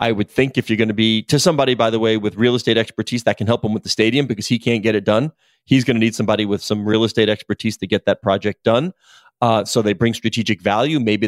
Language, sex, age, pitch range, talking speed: English, male, 30-49, 105-120 Hz, 275 wpm